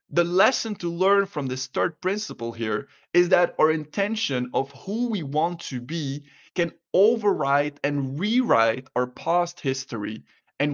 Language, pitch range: English, 130-175 Hz